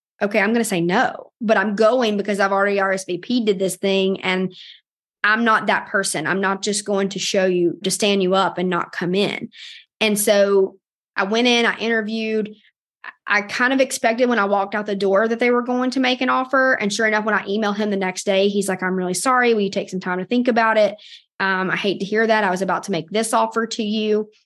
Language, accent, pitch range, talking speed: English, American, 190-220 Hz, 245 wpm